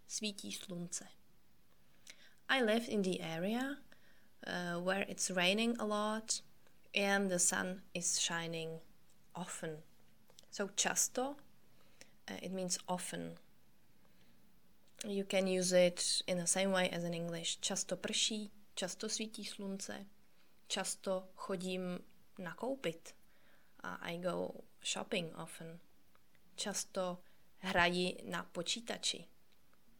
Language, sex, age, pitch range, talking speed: Czech, female, 20-39, 170-200 Hz, 105 wpm